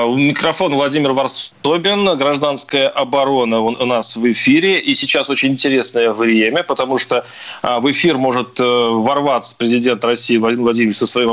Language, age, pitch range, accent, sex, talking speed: Russian, 30-49, 130-175 Hz, native, male, 140 wpm